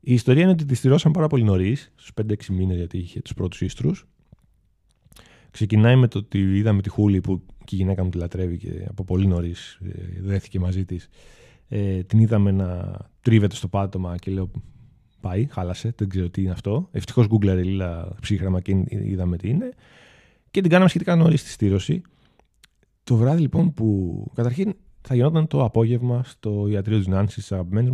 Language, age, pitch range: Greek, 20-39, 95-130 Hz